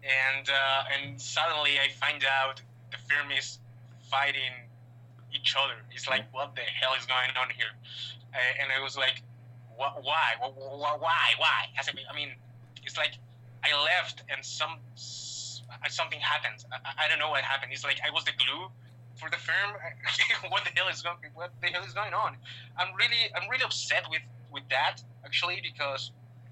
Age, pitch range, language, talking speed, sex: 20-39, 120-140 Hz, English, 175 wpm, male